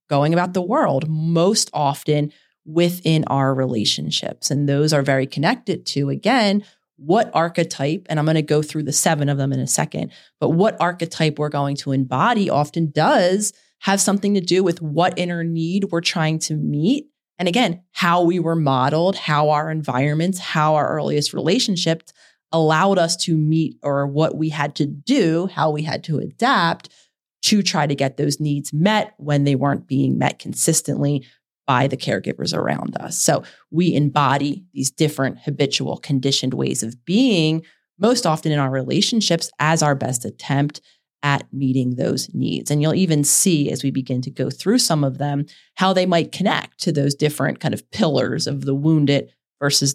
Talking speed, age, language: 180 wpm, 30-49, English